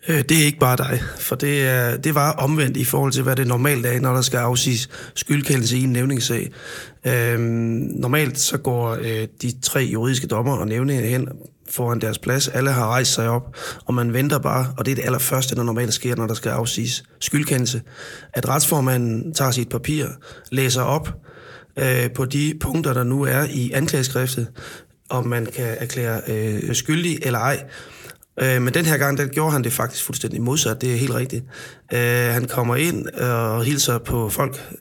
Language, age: Danish, 30-49